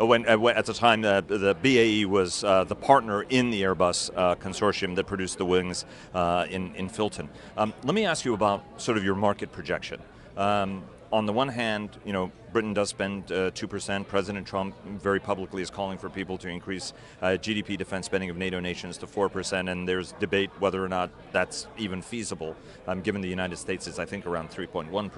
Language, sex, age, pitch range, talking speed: English, male, 40-59, 95-110 Hz, 205 wpm